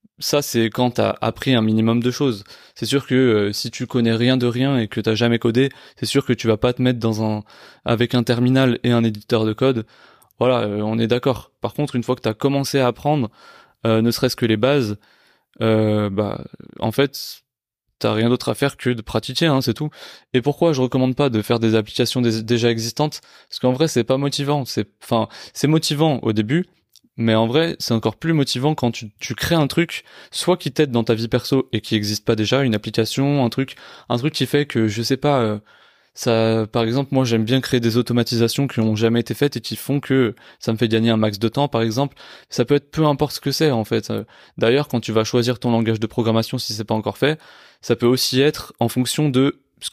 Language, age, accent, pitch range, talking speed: French, 20-39, French, 115-135 Hz, 245 wpm